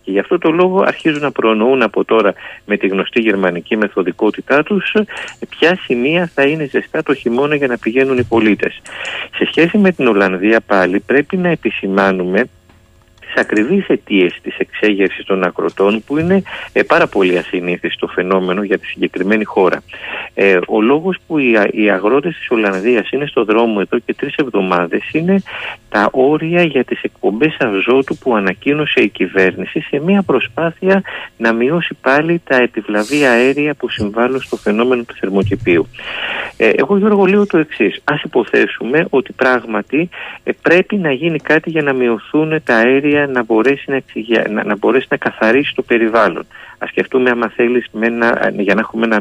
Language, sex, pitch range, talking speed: Greek, male, 105-150 Hz, 160 wpm